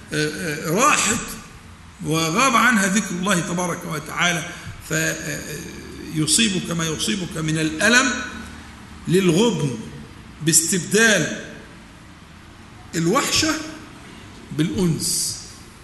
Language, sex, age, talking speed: Arabic, male, 50-69, 60 wpm